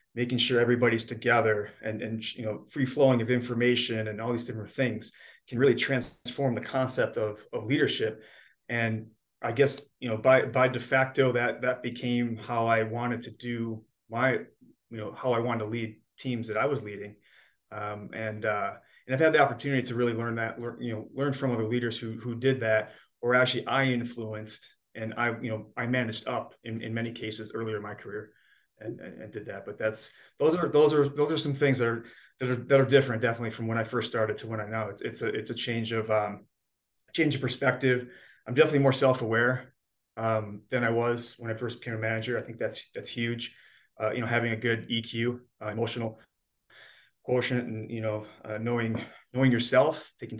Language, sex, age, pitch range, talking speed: English, male, 30-49, 110-125 Hz, 210 wpm